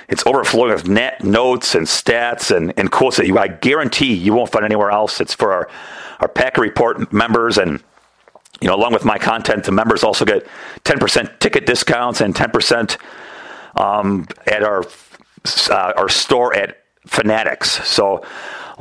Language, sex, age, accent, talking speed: English, male, 40-59, American, 165 wpm